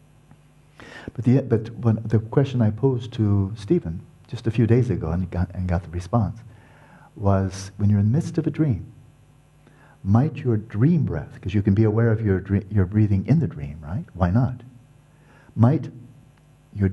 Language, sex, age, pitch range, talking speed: English, male, 60-79, 95-135 Hz, 180 wpm